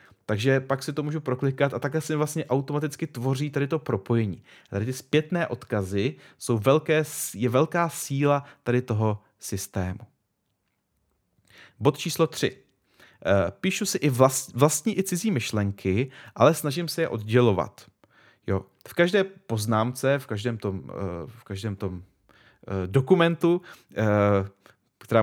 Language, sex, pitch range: Czech, male, 110-140 Hz